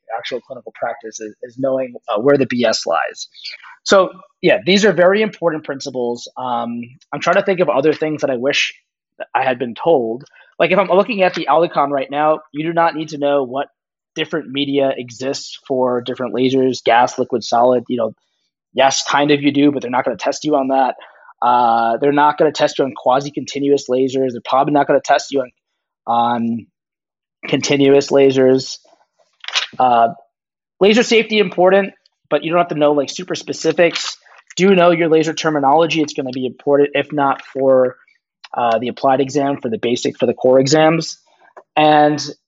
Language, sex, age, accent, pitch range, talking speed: English, male, 20-39, American, 130-155 Hz, 190 wpm